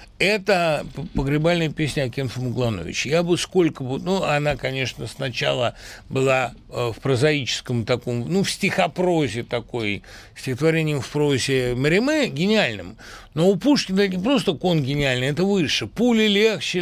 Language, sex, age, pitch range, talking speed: Russian, male, 60-79, 105-155 Hz, 135 wpm